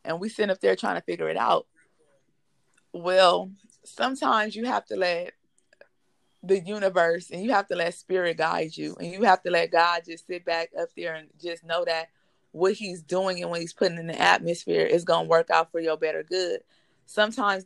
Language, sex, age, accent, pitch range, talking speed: English, female, 20-39, American, 170-210 Hz, 205 wpm